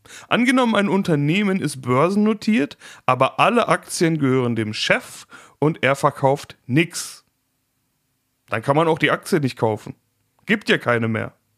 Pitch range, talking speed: 120-165 Hz, 140 wpm